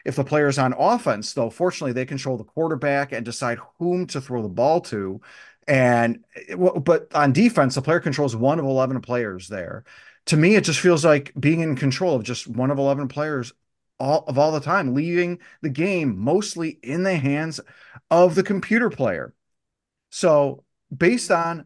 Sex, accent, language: male, American, English